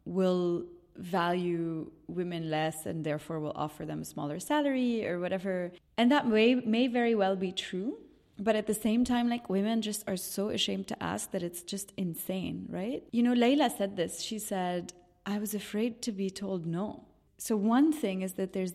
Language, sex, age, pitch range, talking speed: English, female, 20-39, 180-230 Hz, 190 wpm